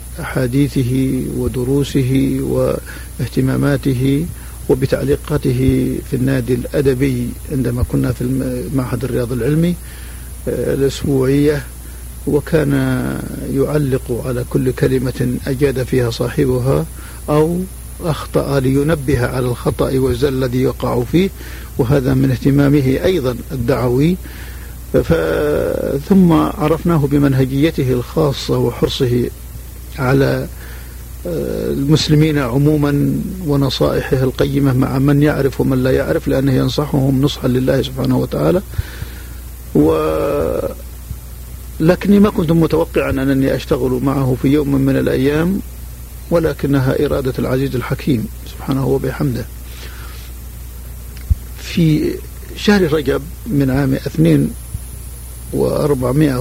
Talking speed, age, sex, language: 85 wpm, 50-69, male, Arabic